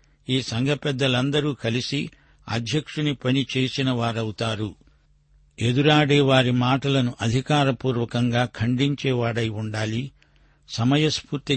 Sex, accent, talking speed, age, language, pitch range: male, native, 60 wpm, 60-79, Telugu, 115-140 Hz